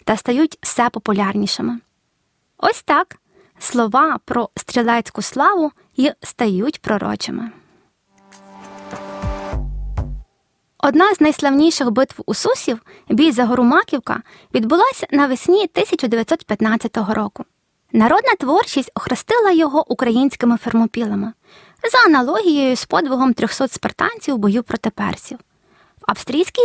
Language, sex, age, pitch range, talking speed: Ukrainian, female, 20-39, 220-305 Hz, 100 wpm